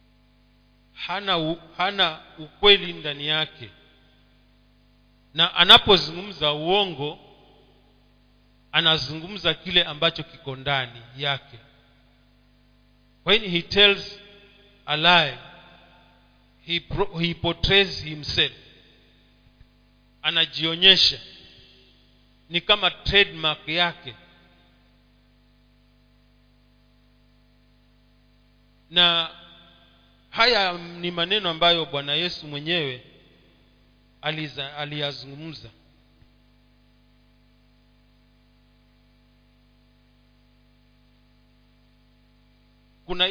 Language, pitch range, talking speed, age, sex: Swahili, 125-170 Hz, 55 wpm, 40-59, male